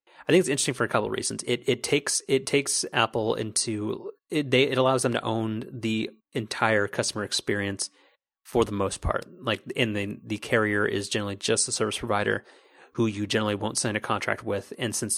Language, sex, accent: English, male, American